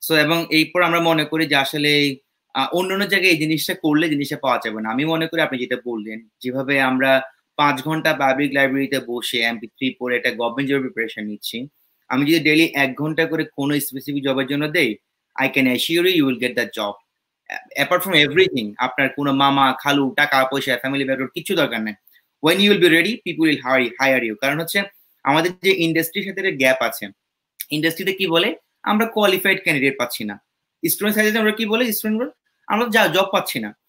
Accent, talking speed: Indian, 120 wpm